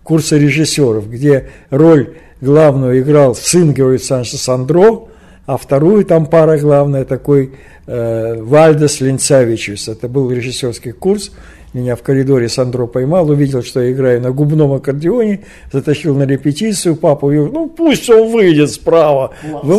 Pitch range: 130-160 Hz